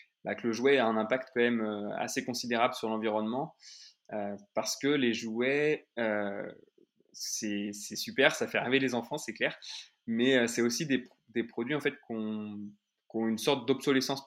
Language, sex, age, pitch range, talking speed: French, male, 20-39, 110-130 Hz, 175 wpm